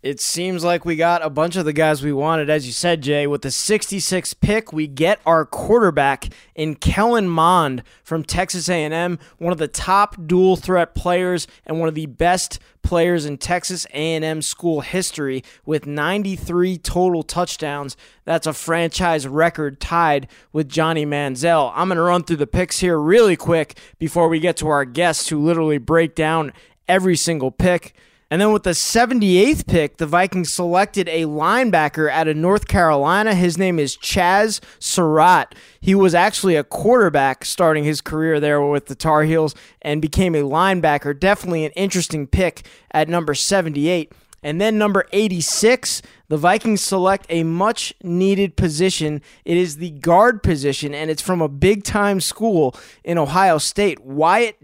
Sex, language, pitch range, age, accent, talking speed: male, English, 155-185 Hz, 20-39, American, 165 wpm